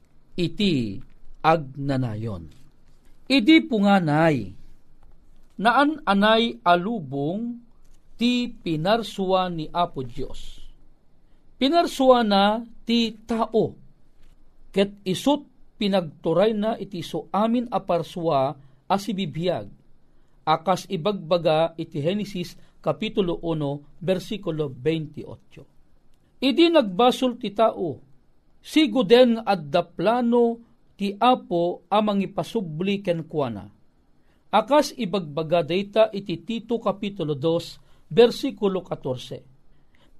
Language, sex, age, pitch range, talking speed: Filipino, male, 50-69, 155-225 Hz, 80 wpm